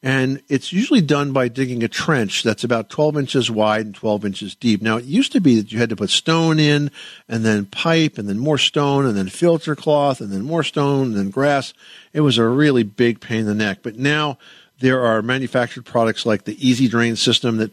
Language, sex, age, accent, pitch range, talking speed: English, male, 50-69, American, 110-135 Hz, 230 wpm